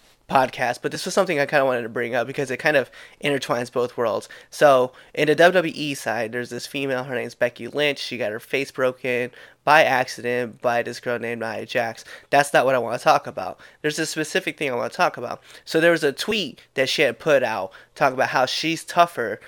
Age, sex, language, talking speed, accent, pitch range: 20-39, male, English, 235 wpm, American, 125-145 Hz